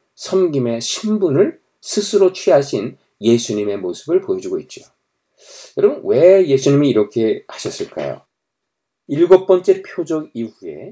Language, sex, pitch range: Korean, male, 130-215 Hz